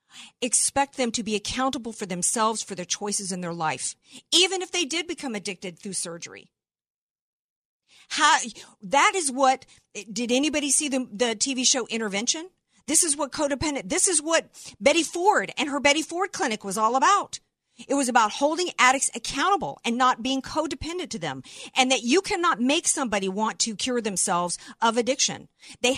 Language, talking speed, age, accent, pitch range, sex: English, 175 wpm, 50-69, American, 210-275 Hz, female